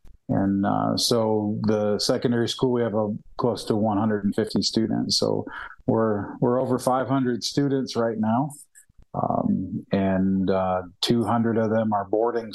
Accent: American